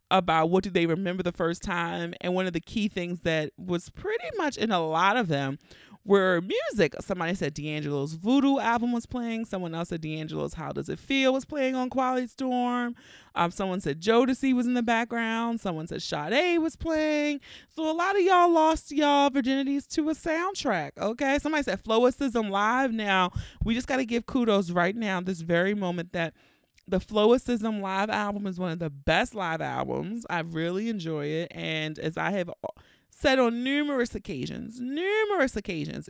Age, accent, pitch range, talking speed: 30-49, American, 175-255 Hz, 185 wpm